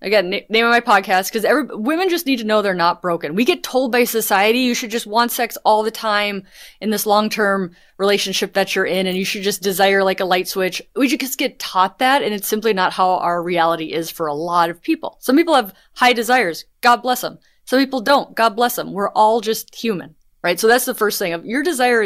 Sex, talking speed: female, 235 wpm